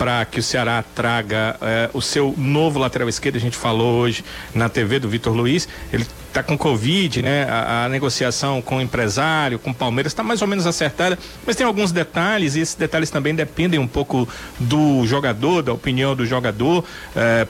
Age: 40-59